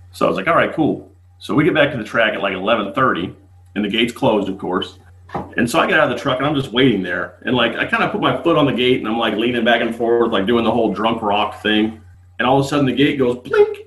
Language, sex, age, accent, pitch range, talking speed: English, male, 40-59, American, 95-140 Hz, 305 wpm